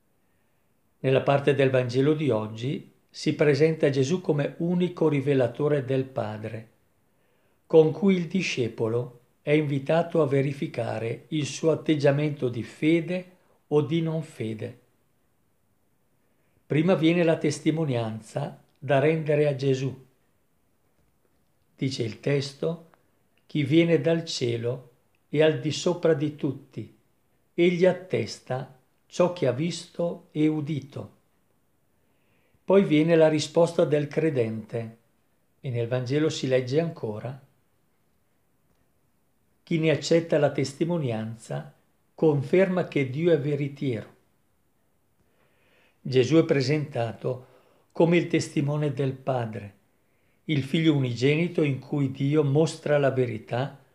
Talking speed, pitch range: 110 wpm, 125-160 Hz